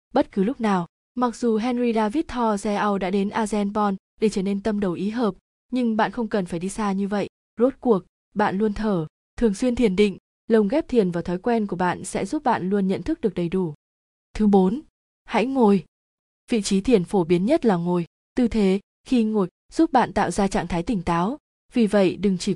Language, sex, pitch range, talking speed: Vietnamese, female, 185-230 Hz, 220 wpm